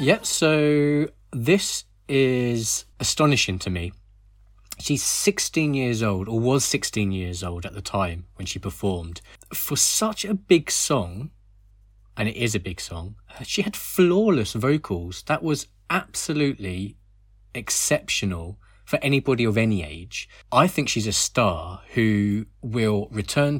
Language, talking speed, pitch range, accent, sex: English, 135 wpm, 100-130 Hz, British, male